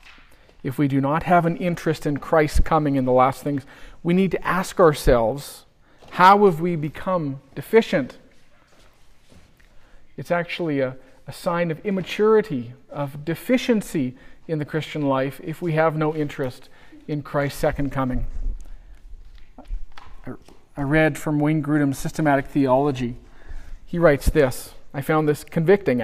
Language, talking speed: English, 140 wpm